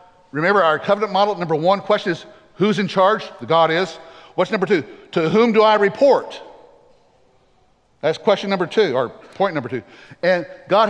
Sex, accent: male, American